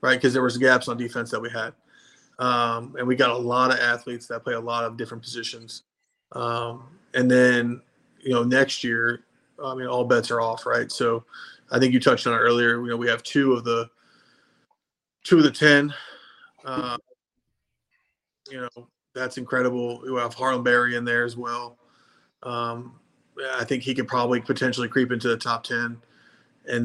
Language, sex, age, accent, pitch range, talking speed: English, male, 20-39, American, 120-130 Hz, 190 wpm